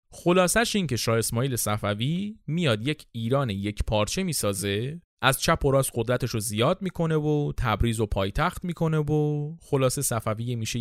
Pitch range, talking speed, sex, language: 105-155 Hz, 150 wpm, male, Persian